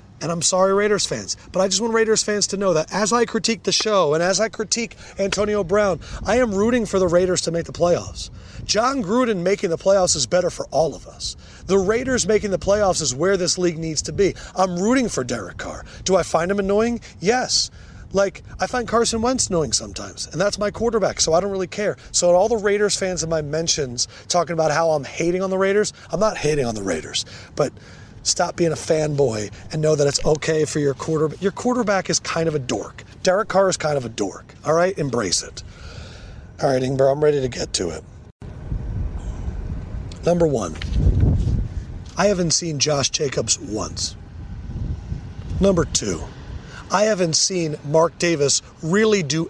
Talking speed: 200 wpm